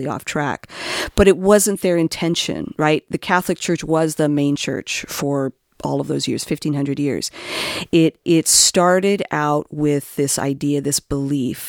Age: 40-59